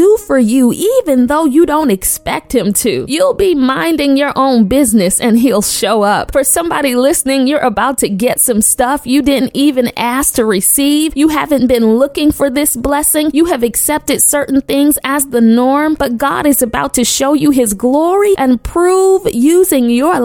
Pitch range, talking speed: 245-320 Hz, 185 wpm